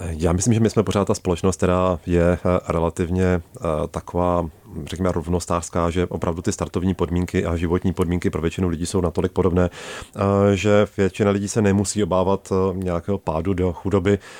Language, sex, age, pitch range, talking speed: Czech, male, 30-49, 85-100 Hz, 160 wpm